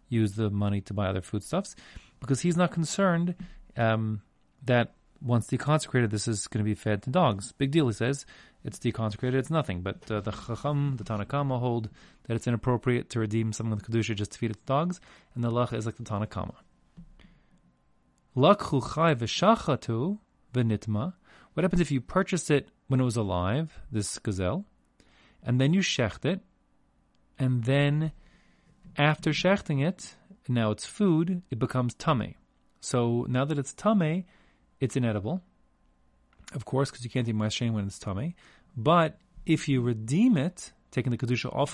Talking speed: 165 wpm